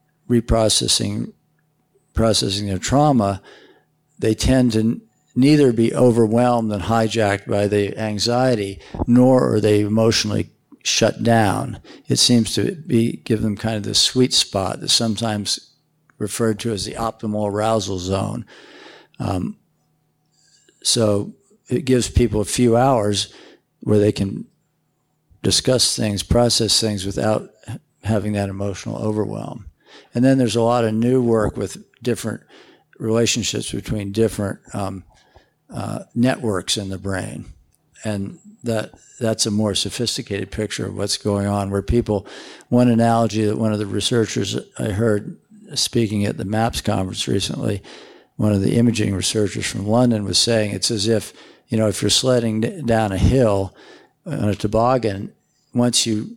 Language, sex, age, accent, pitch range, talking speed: English, male, 50-69, American, 105-120 Hz, 145 wpm